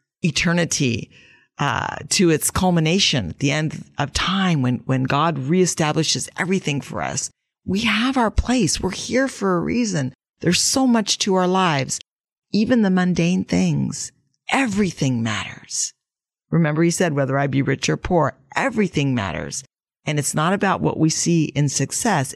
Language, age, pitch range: English, 50-69, 135-180 Hz